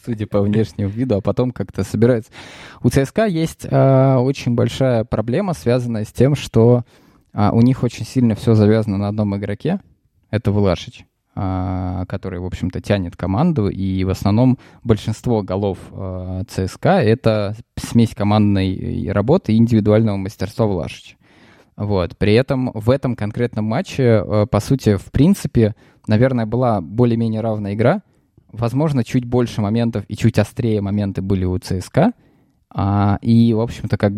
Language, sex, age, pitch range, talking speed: Russian, male, 20-39, 100-120 Hz, 145 wpm